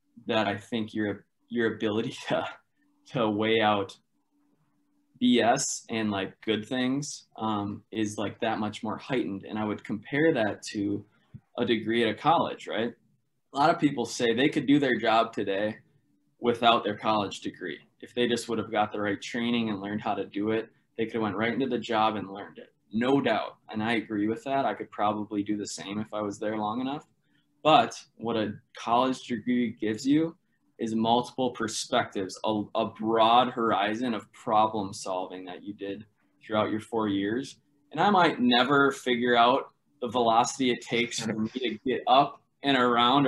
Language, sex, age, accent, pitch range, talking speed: English, male, 20-39, American, 105-130 Hz, 185 wpm